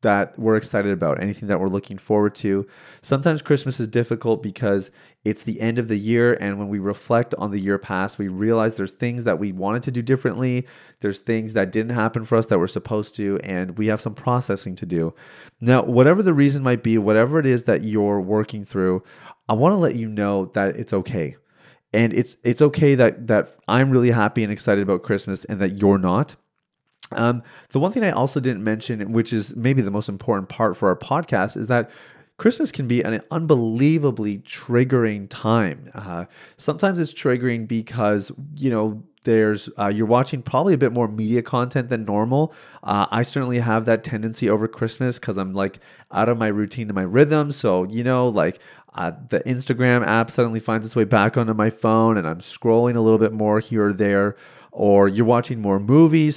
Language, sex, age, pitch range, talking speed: English, male, 30-49, 105-130 Hz, 205 wpm